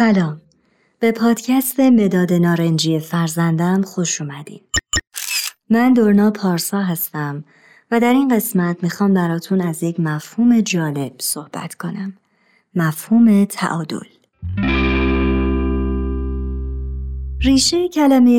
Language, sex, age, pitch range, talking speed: Persian, male, 30-49, 165-230 Hz, 90 wpm